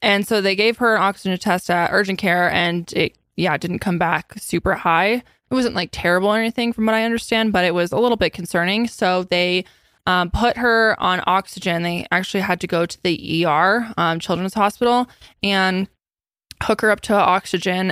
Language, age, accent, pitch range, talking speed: English, 20-39, American, 170-205 Hz, 200 wpm